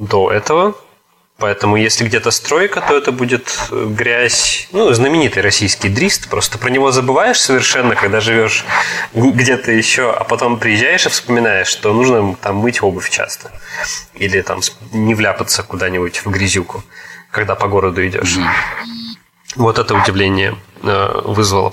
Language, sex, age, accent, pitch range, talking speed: Russian, male, 20-39, native, 100-125 Hz, 135 wpm